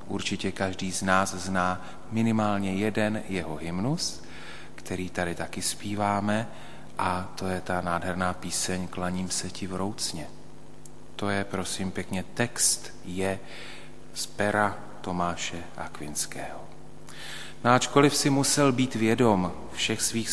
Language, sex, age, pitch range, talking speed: Slovak, male, 40-59, 90-120 Hz, 125 wpm